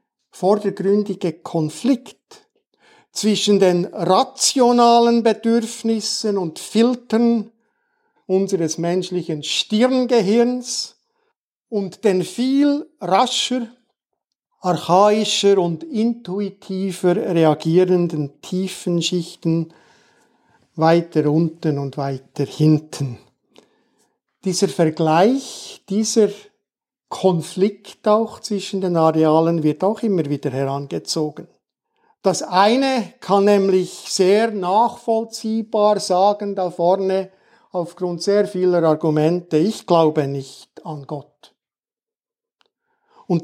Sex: male